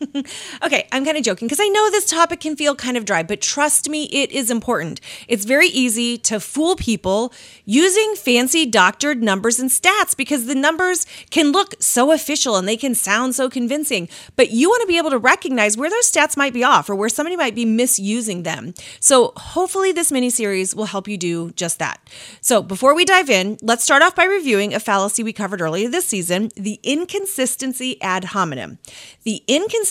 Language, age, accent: English, 30-49, American